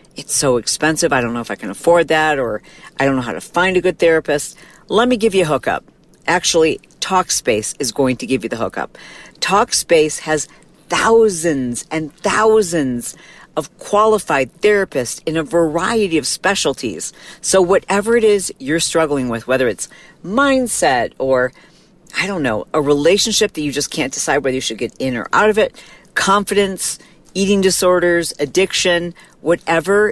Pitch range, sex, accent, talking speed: 135-185 Hz, female, American, 165 wpm